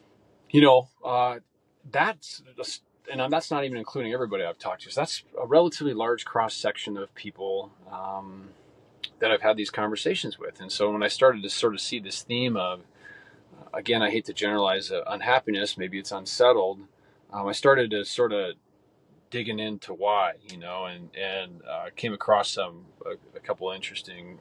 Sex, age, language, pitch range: male, 30-49, English, 100-135 Hz